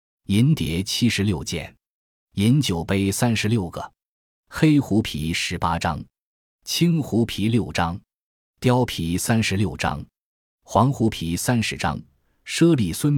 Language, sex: Chinese, male